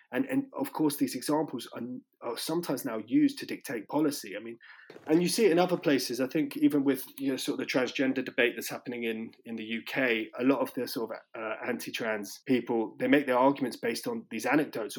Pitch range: 115-170 Hz